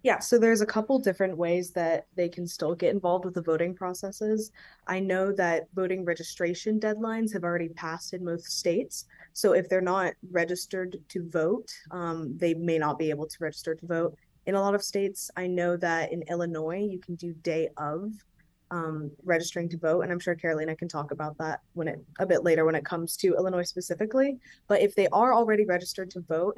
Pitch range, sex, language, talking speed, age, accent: 165-190 Hz, female, English, 210 wpm, 20-39, American